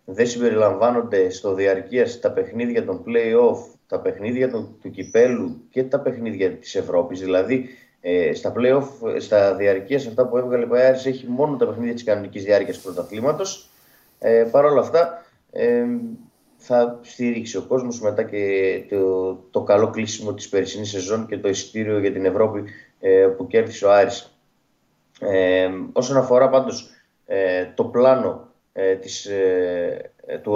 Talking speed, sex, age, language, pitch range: 155 wpm, male, 20-39, Greek, 100-135 Hz